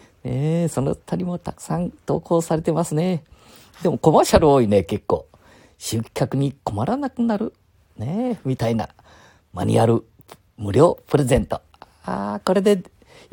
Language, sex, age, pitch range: Japanese, male, 50-69, 100-165 Hz